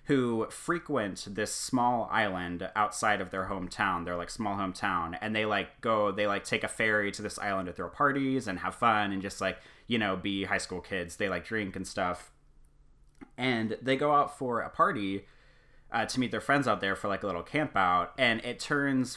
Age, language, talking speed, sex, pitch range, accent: 30-49, English, 215 wpm, male, 95-130 Hz, American